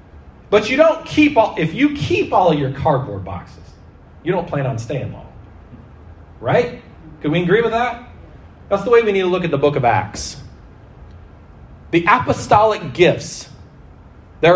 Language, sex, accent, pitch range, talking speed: English, male, American, 135-200 Hz, 170 wpm